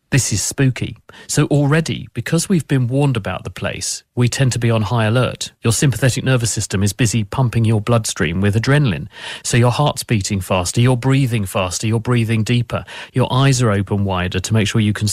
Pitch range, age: 110-135 Hz, 40-59